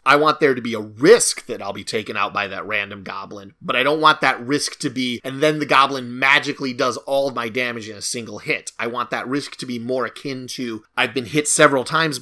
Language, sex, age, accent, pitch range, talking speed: English, male, 30-49, American, 125-160 Hz, 255 wpm